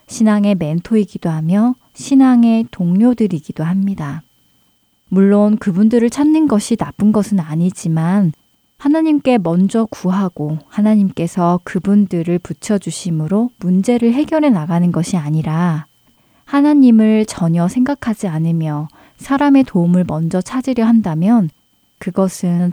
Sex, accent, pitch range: female, native, 170-225 Hz